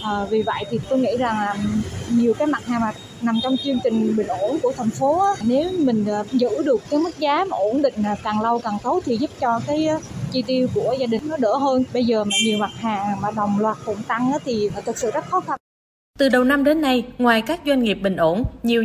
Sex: female